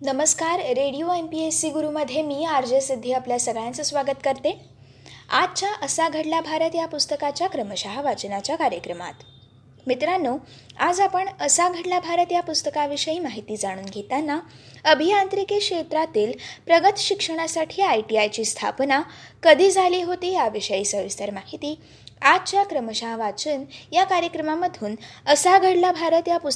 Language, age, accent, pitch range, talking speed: Marathi, 20-39, native, 265-360 Hz, 95 wpm